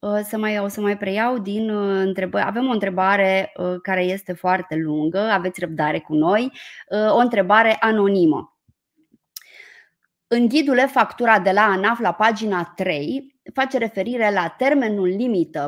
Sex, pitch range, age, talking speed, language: female, 190-240 Hz, 20-39, 125 wpm, Romanian